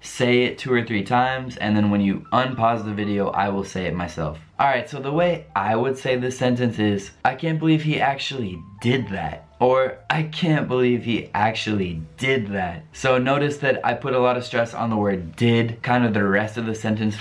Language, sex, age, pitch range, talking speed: Italian, male, 20-39, 100-135 Hz, 220 wpm